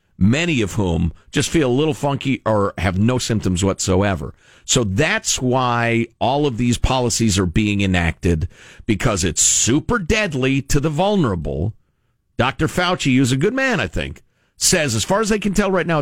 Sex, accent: male, American